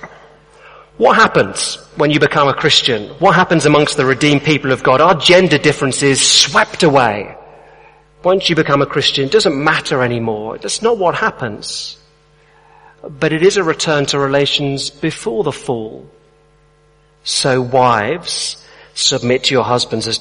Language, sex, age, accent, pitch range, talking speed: English, male, 40-59, British, 125-150 Hz, 150 wpm